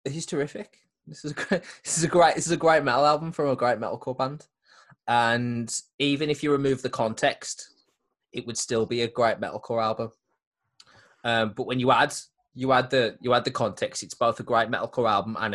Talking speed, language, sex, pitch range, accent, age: 215 wpm, English, male, 110-145 Hz, British, 20-39